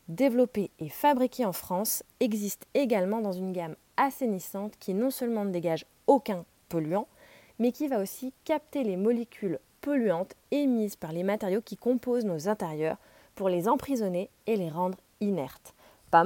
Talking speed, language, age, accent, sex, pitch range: 155 wpm, French, 30-49, French, female, 185-240 Hz